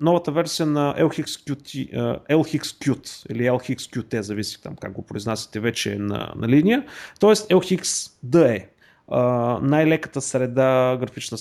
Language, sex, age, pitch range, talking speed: Bulgarian, male, 30-49, 125-160 Hz, 115 wpm